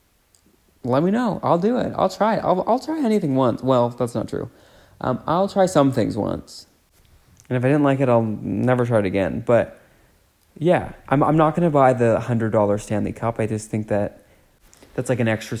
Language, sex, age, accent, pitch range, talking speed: English, male, 20-39, American, 105-130 Hz, 210 wpm